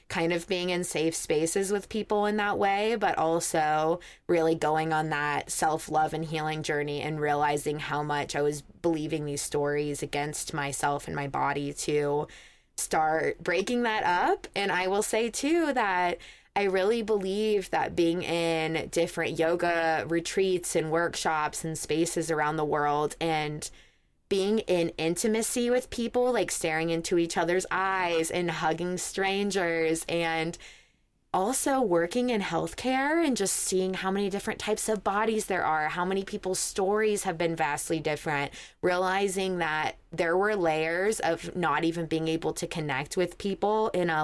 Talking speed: 160 wpm